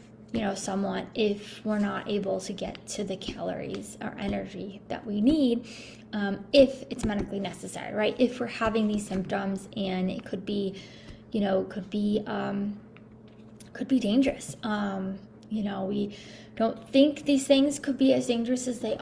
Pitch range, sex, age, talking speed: 205-255 Hz, female, 10-29, 170 wpm